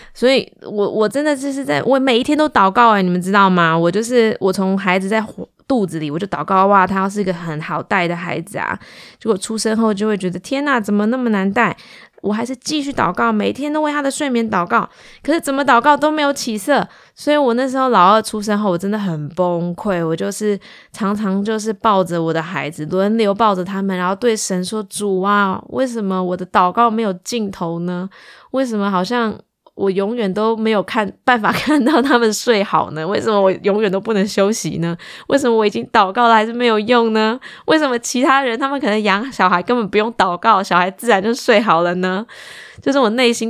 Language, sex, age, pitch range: Chinese, female, 20-39, 185-235 Hz